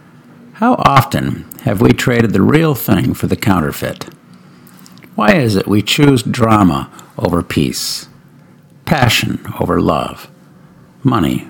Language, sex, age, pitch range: English, male, 60-79, 90-120 Hz